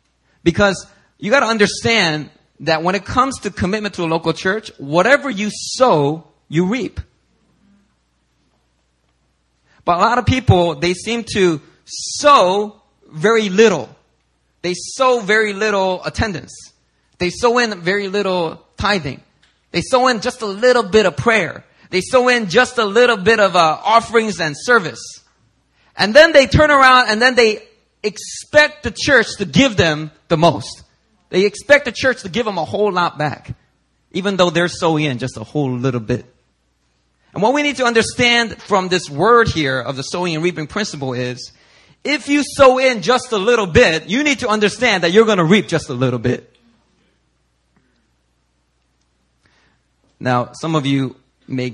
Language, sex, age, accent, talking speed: English, male, 30-49, American, 165 wpm